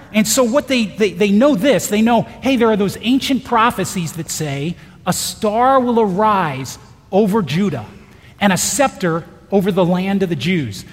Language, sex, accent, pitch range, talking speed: English, male, American, 175-235 Hz, 180 wpm